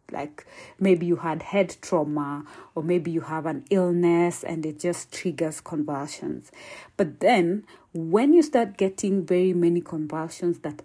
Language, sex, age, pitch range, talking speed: English, female, 40-59, 165-205 Hz, 150 wpm